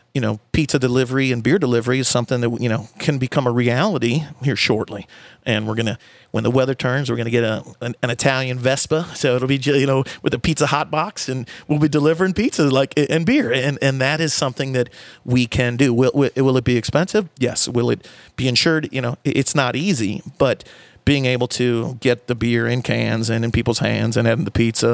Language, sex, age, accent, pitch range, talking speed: English, male, 40-59, American, 120-140 Hz, 225 wpm